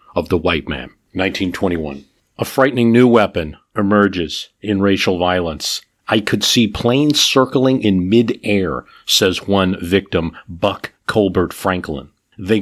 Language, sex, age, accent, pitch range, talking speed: English, male, 50-69, American, 90-115 Hz, 130 wpm